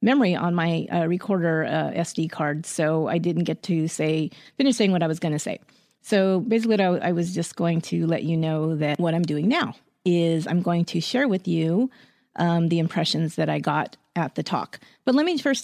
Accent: American